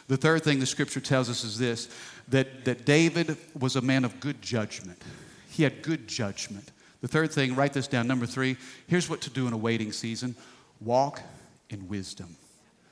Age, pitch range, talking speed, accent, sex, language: 50-69, 130-165 Hz, 190 wpm, American, male, English